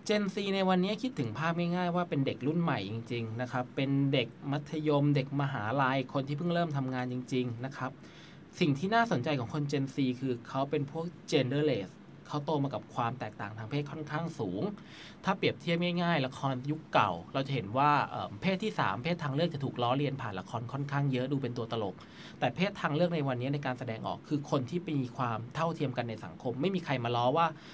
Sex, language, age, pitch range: male, Thai, 20-39, 125-160 Hz